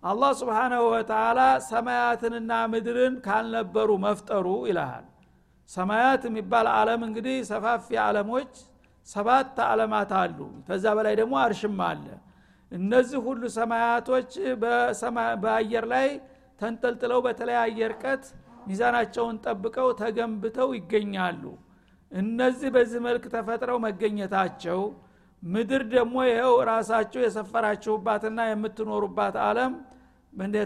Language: Amharic